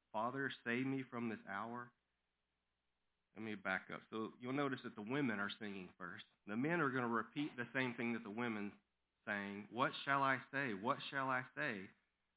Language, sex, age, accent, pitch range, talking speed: English, male, 40-59, American, 100-130 Hz, 195 wpm